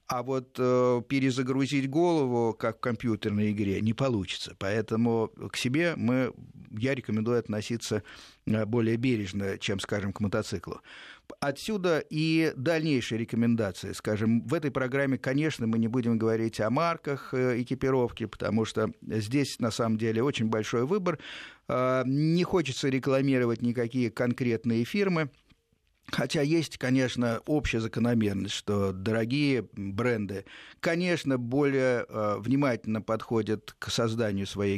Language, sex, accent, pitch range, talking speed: Russian, male, native, 110-135 Hz, 120 wpm